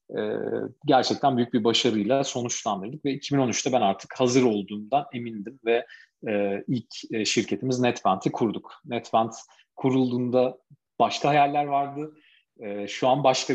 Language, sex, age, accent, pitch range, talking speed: Turkish, male, 40-59, native, 105-125 Hz, 130 wpm